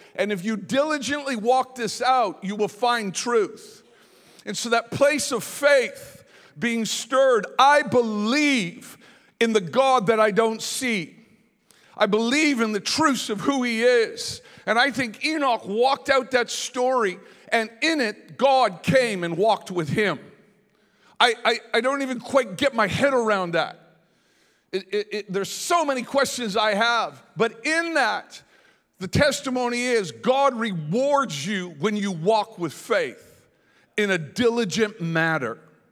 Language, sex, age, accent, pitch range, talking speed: English, male, 50-69, American, 195-255 Hz, 150 wpm